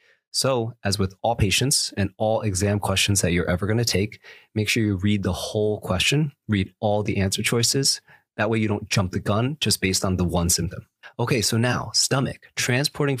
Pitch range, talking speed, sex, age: 95-120 Hz, 205 wpm, male, 30-49